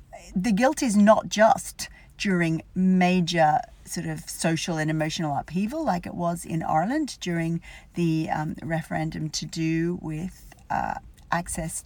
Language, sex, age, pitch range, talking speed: English, female, 40-59, 160-215 Hz, 135 wpm